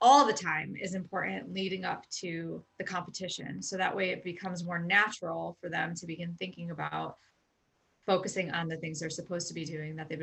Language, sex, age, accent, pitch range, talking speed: English, female, 30-49, American, 180-235 Hz, 200 wpm